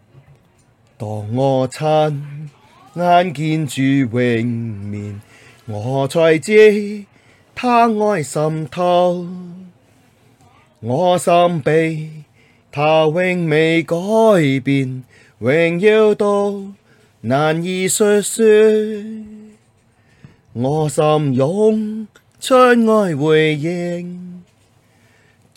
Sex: male